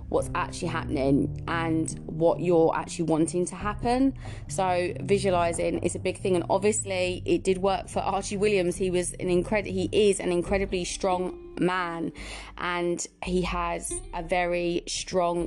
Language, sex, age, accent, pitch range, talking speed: English, female, 20-39, British, 165-190 Hz, 155 wpm